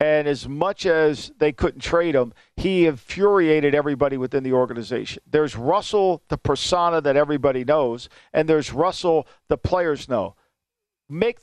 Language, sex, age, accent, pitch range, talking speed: English, male, 50-69, American, 145-190 Hz, 145 wpm